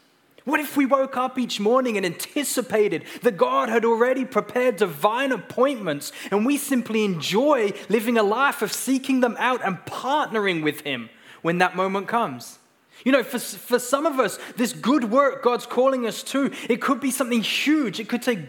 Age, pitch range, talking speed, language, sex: 20-39, 180-250 Hz, 185 wpm, English, male